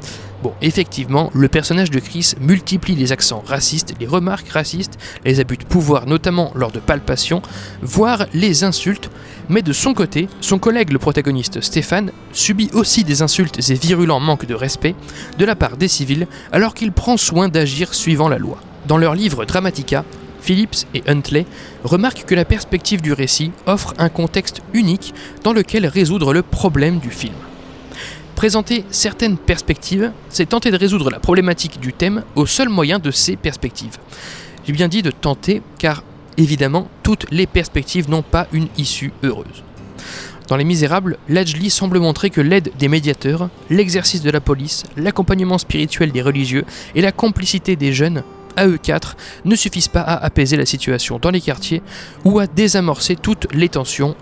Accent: French